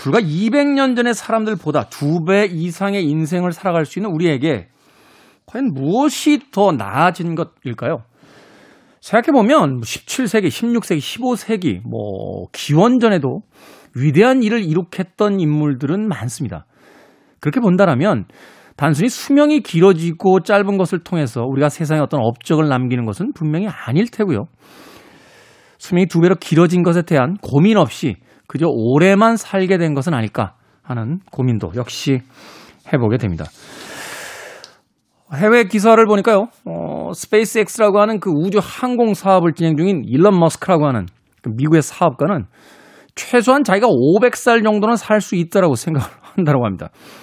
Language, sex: Korean, male